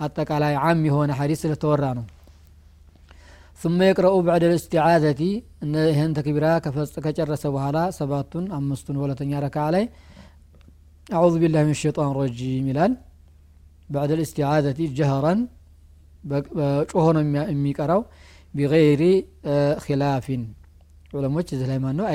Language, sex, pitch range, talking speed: Amharic, male, 135-160 Hz, 110 wpm